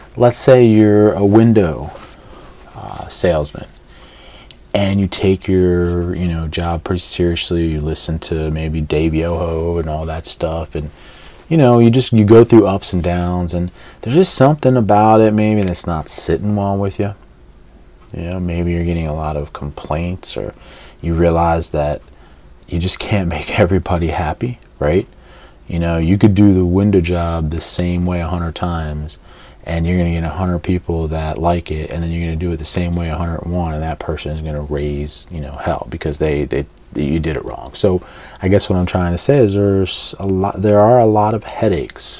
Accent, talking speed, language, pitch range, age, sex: American, 200 wpm, English, 80-100 Hz, 30-49, male